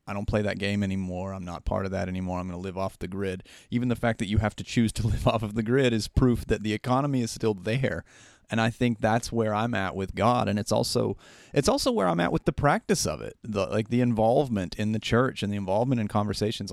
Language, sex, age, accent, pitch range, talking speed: English, male, 30-49, American, 100-120 Hz, 270 wpm